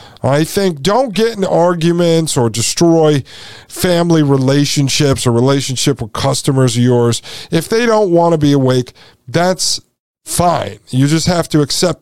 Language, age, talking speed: English, 50-69, 150 wpm